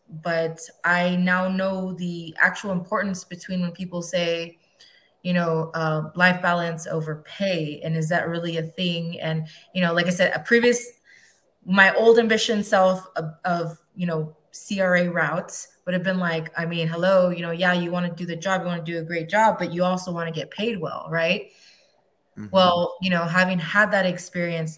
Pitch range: 165-185 Hz